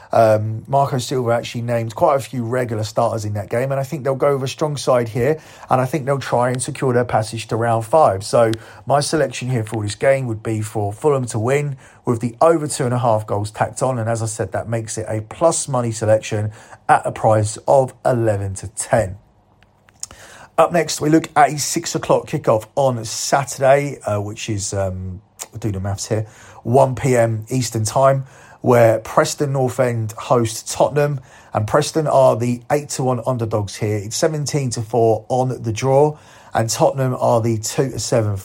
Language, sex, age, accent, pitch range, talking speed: English, male, 40-59, British, 110-135 Hz, 190 wpm